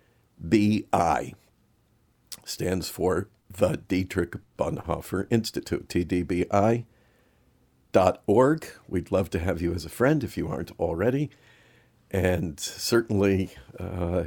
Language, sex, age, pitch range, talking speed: English, male, 50-69, 90-110 Hz, 100 wpm